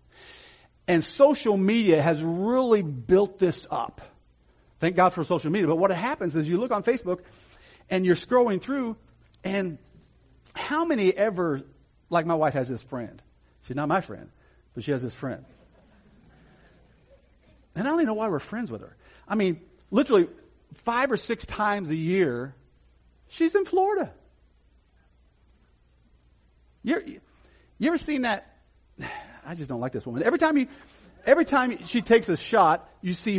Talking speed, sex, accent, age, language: 155 wpm, male, American, 50-69, English